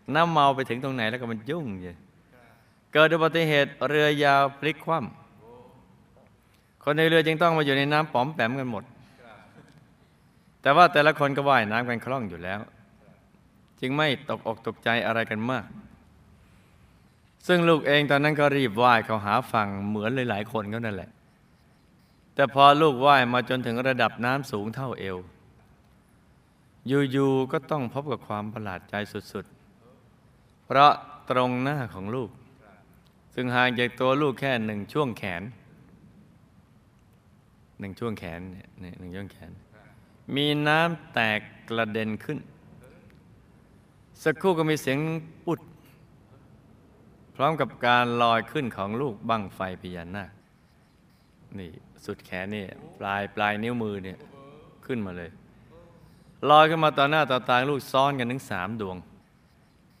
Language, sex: Thai, male